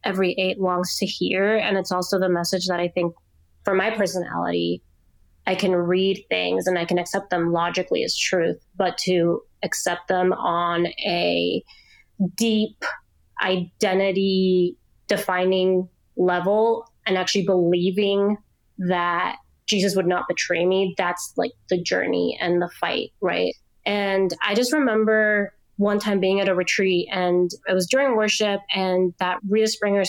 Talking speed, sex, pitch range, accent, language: 150 wpm, female, 180-200 Hz, American, English